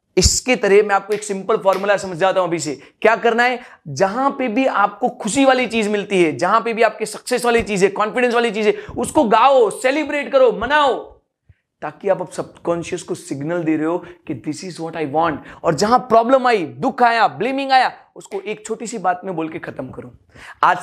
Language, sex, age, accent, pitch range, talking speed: Hindi, male, 30-49, native, 175-235 Hz, 205 wpm